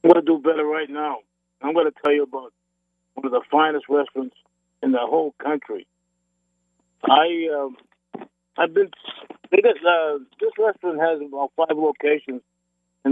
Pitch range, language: 120-160 Hz, English